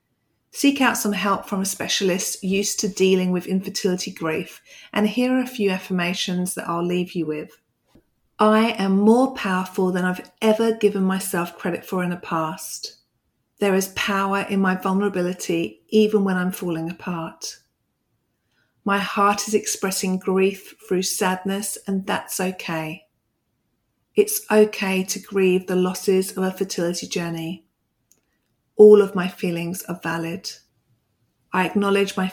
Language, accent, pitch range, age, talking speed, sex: English, British, 175-200 Hz, 40-59, 145 wpm, female